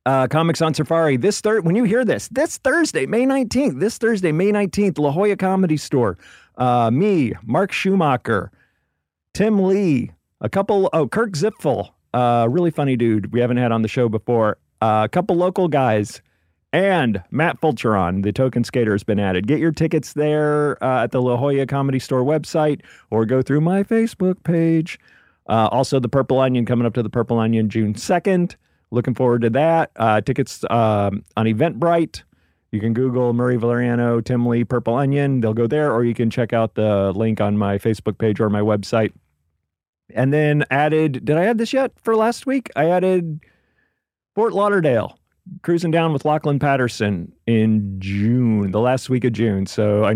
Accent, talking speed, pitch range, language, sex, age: American, 185 wpm, 110-160 Hz, English, male, 40-59